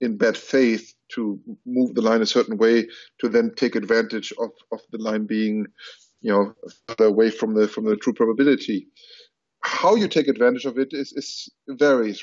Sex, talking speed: male, 180 wpm